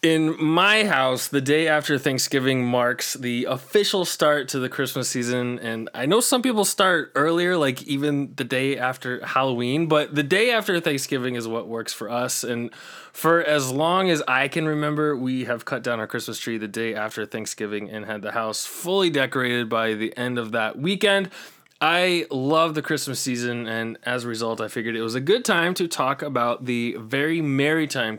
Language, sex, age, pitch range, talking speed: English, male, 20-39, 120-155 Hz, 195 wpm